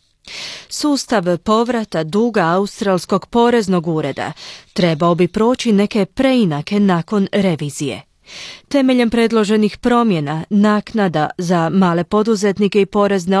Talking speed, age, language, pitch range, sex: 100 wpm, 30-49, Croatian, 170-225 Hz, female